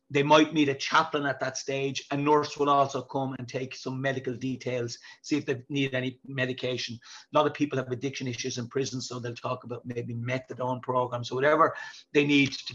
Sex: male